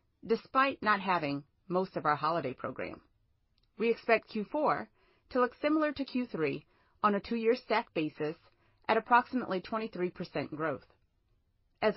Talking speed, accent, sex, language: 130 wpm, American, female, English